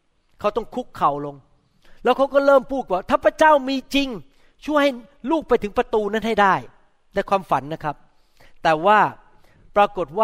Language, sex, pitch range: Thai, male, 195-270 Hz